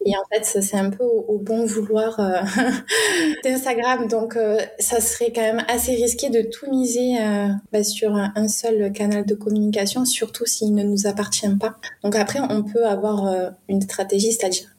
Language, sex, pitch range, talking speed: French, female, 200-235 Hz, 190 wpm